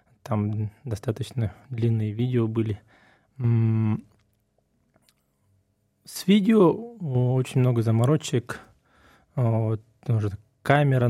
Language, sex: Russian, male